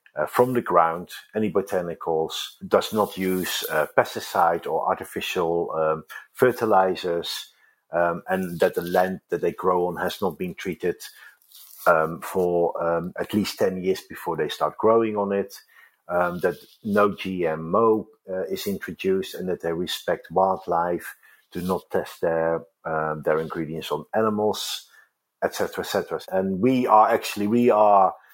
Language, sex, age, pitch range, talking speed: English, male, 50-69, 90-125 Hz, 150 wpm